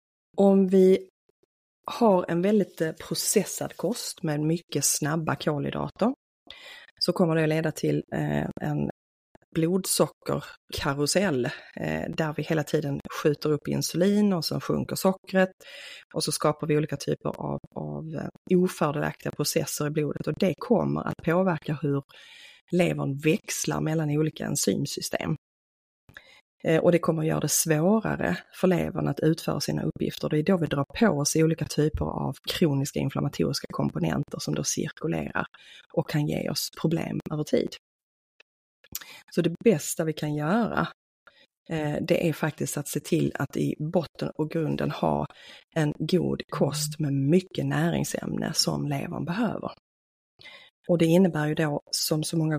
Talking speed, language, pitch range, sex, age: 140 wpm, Swedish, 145-175 Hz, female, 30-49